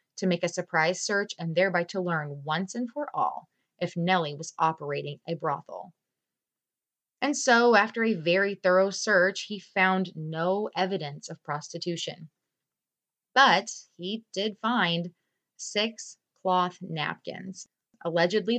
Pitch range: 165-205 Hz